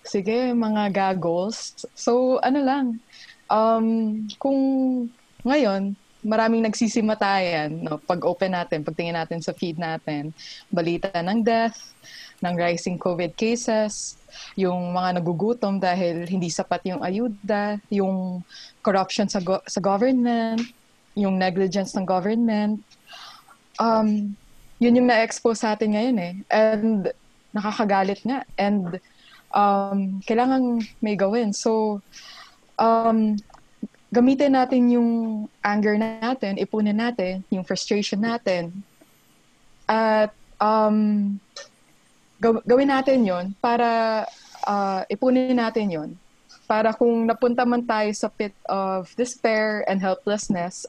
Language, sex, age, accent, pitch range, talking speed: Filipino, female, 20-39, native, 190-230 Hz, 115 wpm